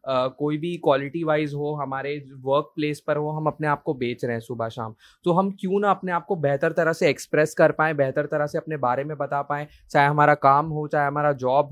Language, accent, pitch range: Hindi, native, 140-165 Hz